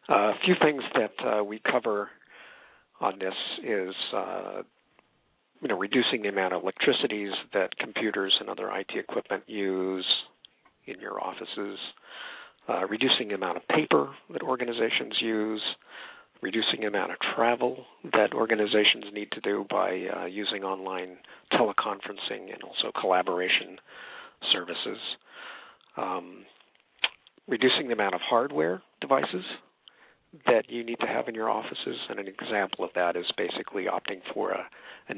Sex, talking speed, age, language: male, 140 wpm, 50-69, English